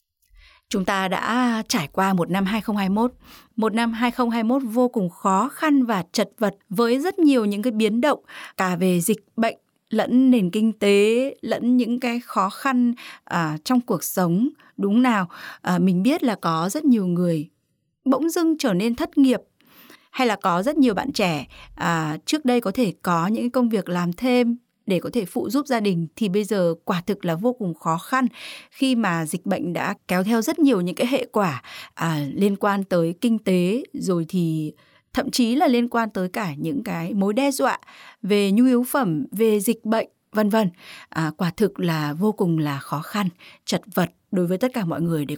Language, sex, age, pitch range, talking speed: Vietnamese, female, 20-39, 180-245 Hz, 200 wpm